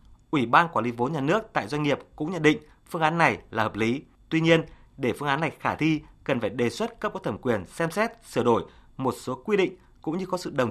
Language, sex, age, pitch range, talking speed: Vietnamese, male, 20-39, 115-155 Hz, 270 wpm